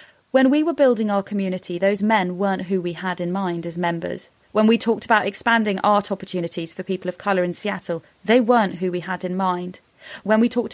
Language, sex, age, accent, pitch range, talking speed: English, female, 30-49, British, 180-220 Hz, 220 wpm